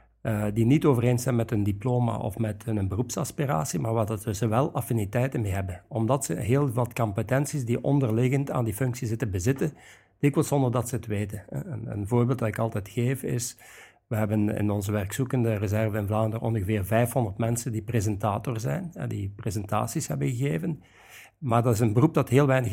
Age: 60-79